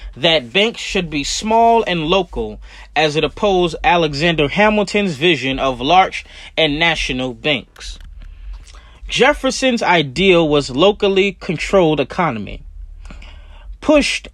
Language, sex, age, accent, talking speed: English, male, 30-49, American, 105 wpm